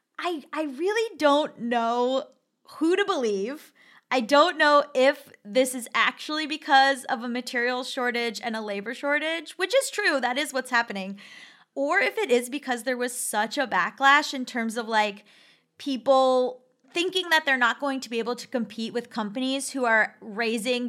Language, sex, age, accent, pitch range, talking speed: English, female, 10-29, American, 235-295 Hz, 175 wpm